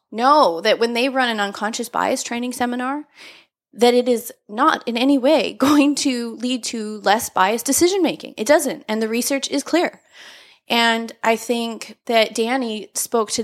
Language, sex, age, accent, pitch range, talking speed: English, female, 20-39, American, 205-260 Hz, 170 wpm